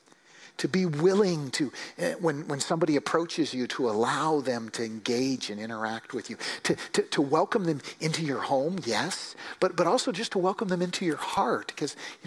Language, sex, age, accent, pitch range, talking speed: English, male, 50-69, American, 145-190 Hz, 190 wpm